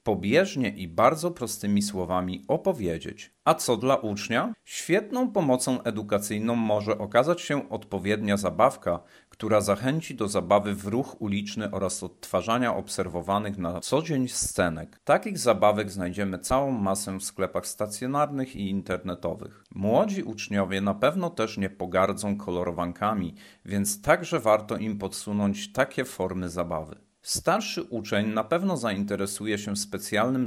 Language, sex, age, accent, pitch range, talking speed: Polish, male, 40-59, native, 95-125 Hz, 130 wpm